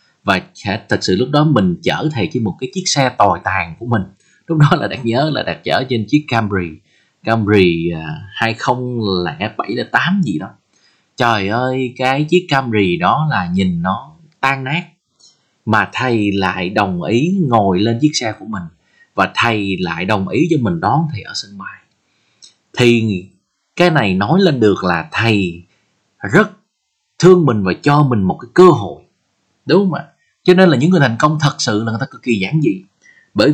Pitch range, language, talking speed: 100-155 Hz, Vietnamese, 190 wpm